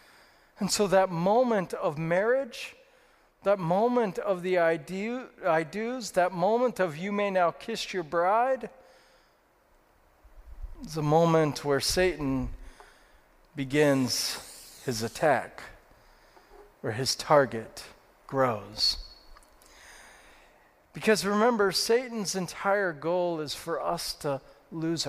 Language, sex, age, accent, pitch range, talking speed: English, male, 40-59, American, 130-195 Hz, 105 wpm